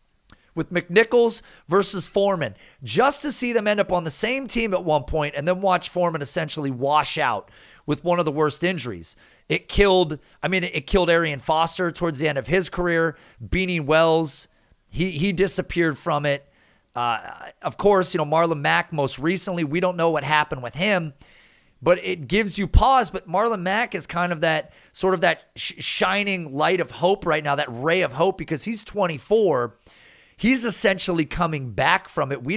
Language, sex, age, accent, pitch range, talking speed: English, male, 40-59, American, 150-190 Hz, 190 wpm